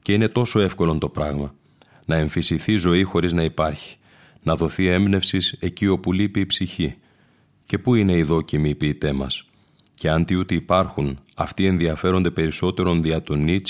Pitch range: 80-95 Hz